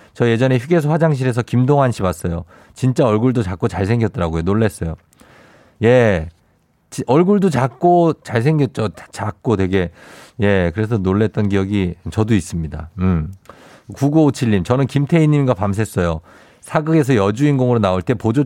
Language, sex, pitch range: Korean, male, 100-140 Hz